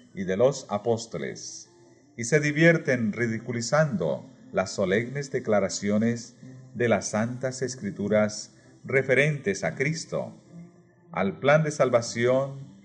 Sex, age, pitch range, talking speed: male, 40-59, 115-155 Hz, 105 wpm